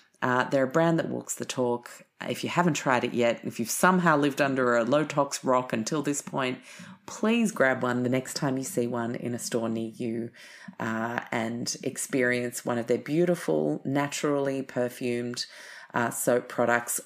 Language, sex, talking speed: English, female, 180 wpm